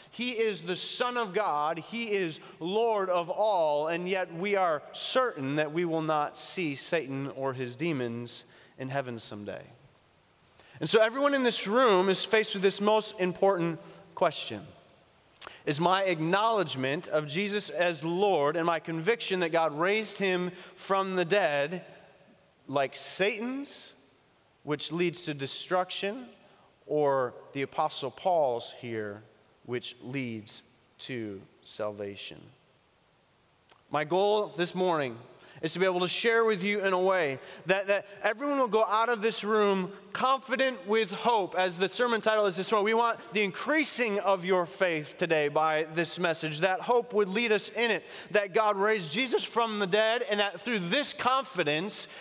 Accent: American